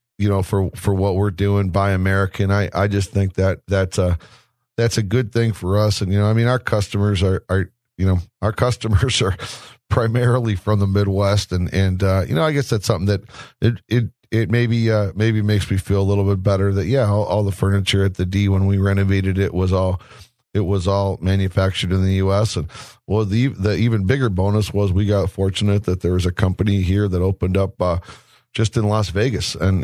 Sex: male